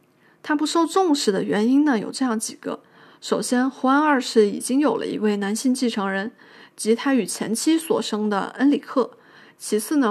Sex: female